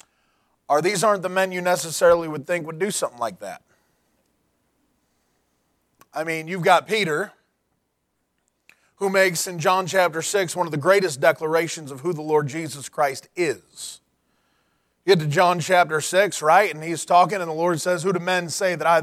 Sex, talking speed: male, 175 wpm